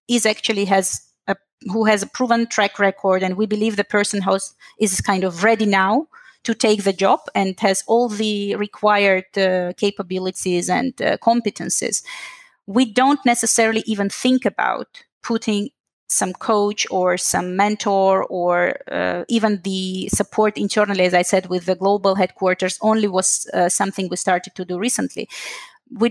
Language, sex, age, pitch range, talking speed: English, female, 30-49, 195-230 Hz, 160 wpm